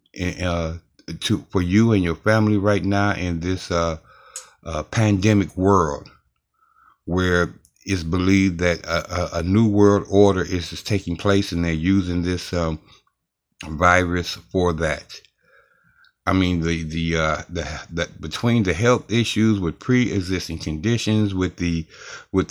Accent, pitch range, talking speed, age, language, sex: American, 85-105 Hz, 145 wpm, 60-79, English, male